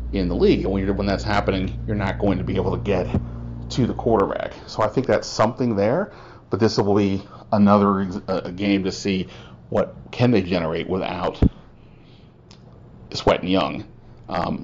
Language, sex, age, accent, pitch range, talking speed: English, male, 30-49, American, 90-105 Hz, 180 wpm